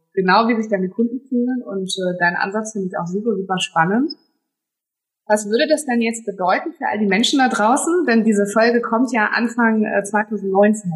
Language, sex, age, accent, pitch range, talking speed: German, female, 20-39, German, 185-225 Hz, 195 wpm